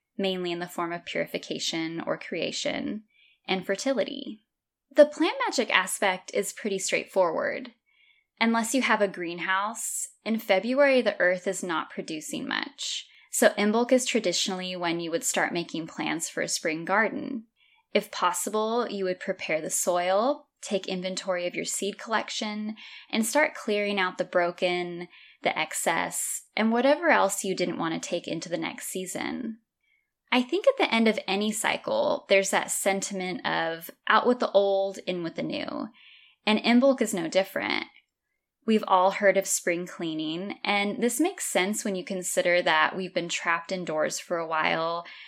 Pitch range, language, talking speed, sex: 180-255 Hz, English, 165 wpm, female